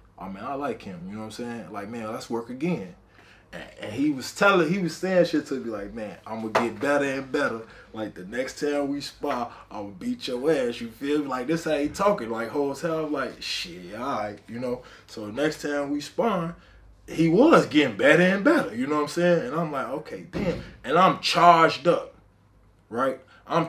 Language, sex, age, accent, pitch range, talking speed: English, male, 20-39, American, 115-170 Hz, 235 wpm